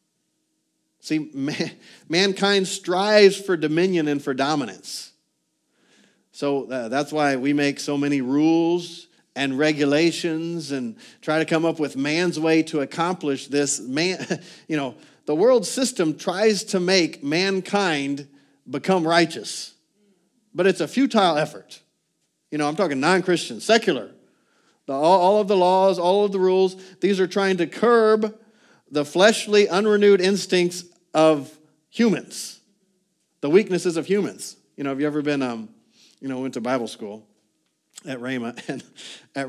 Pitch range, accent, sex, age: 130-185 Hz, American, male, 50-69